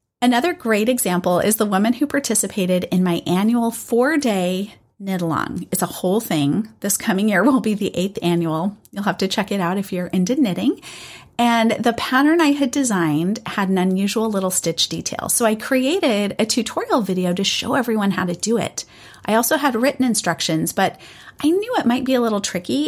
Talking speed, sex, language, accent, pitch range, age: 195 wpm, female, English, American, 190-255 Hz, 30-49